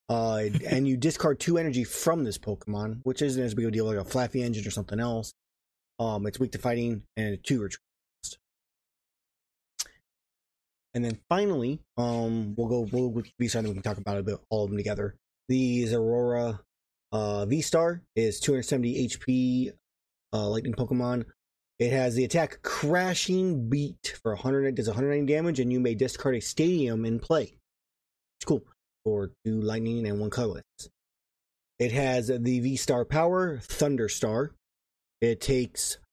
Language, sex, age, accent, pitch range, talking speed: English, male, 20-39, American, 110-135 Hz, 175 wpm